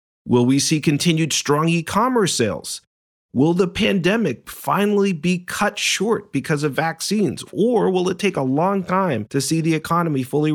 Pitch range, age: 140-185 Hz, 40-59